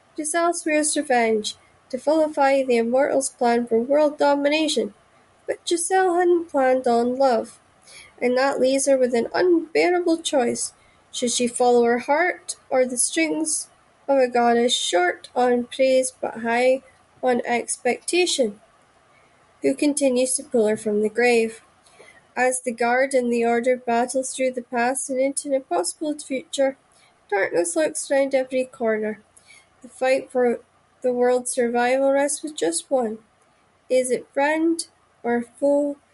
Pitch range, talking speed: 235-275 Hz, 140 wpm